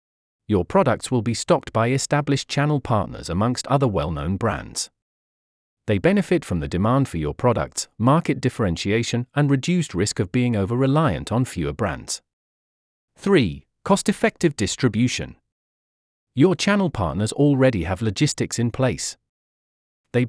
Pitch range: 100-145 Hz